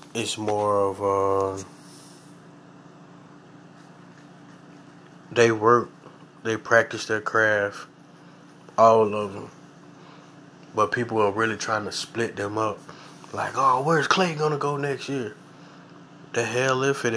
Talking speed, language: 120 wpm, English